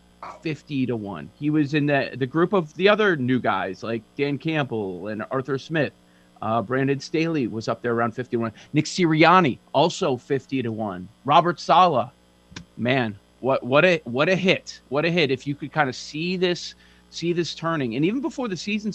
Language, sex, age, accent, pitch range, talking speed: English, male, 30-49, American, 115-150 Hz, 195 wpm